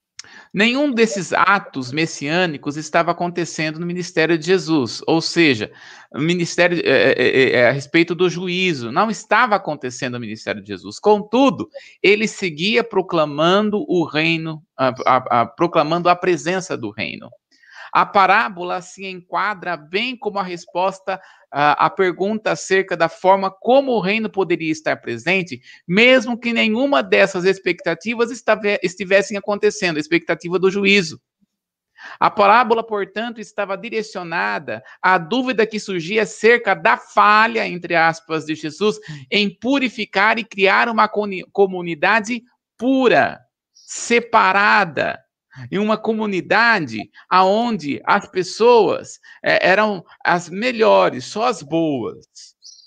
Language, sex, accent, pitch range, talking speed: Portuguese, male, Brazilian, 155-210 Hz, 120 wpm